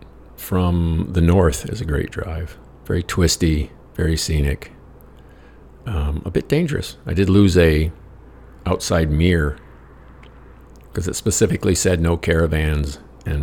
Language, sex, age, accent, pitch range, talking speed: English, male, 50-69, American, 70-90 Hz, 125 wpm